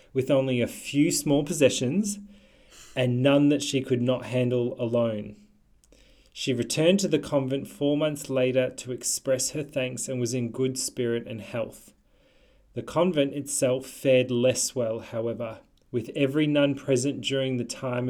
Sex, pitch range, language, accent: male, 120-140 Hz, English, Australian